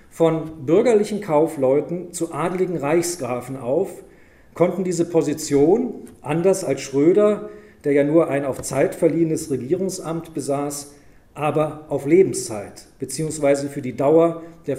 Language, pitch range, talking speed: German, 135-170 Hz, 120 wpm